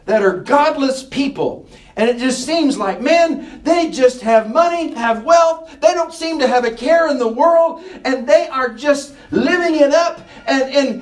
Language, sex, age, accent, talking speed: English, male, 50-69, American, 190 wpm